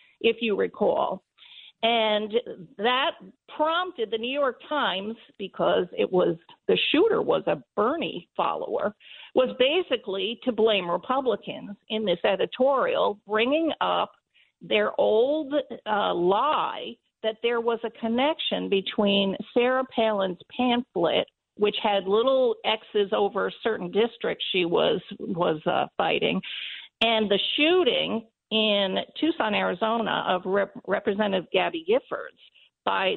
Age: 50-69